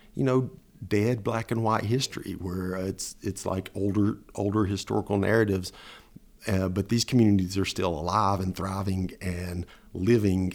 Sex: male